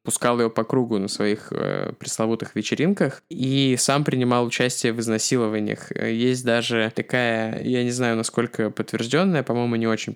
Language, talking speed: Russian, 155 wpm